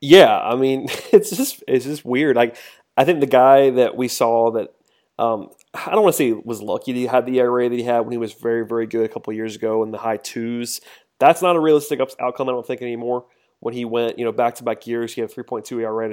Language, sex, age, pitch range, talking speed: English, male, 20-39, 115-140 Hz, 280 wpm